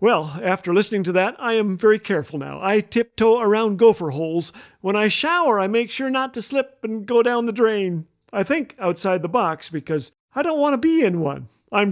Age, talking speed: 50-69, 215 wpm